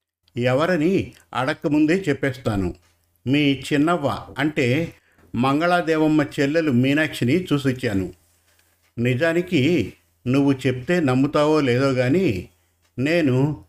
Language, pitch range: Telugu, 100-155 Hz